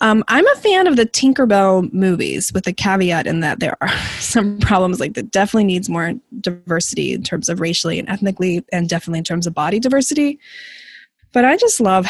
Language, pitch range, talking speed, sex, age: English, 165-200 Hz, 200 wpm, female, 20-39